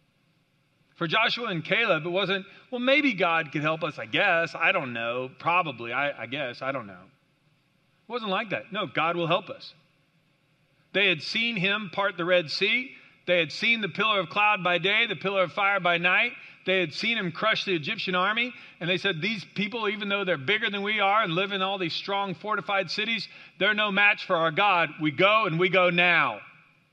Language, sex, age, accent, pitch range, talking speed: English, male, 40-59, American, 145-190 Hz, 215 wpm